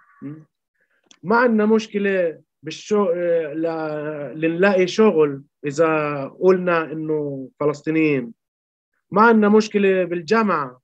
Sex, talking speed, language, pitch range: male, 85 wpm, Arabic, 145-195 Hz